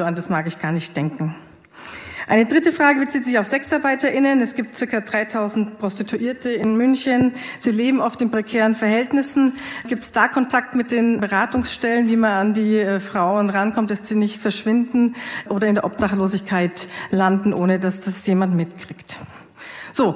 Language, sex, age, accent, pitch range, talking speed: German, female, 40-59, German, 195-240 Hz, 165 wpm